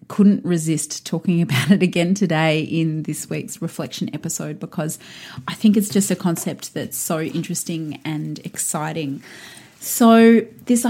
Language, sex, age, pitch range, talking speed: English, female, 30-49, 155-185 Hz, 145 wpm